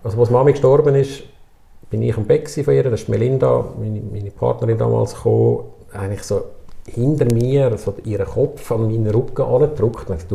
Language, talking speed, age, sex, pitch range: German, 175 wpm, 50-69, male, 100-130 Hz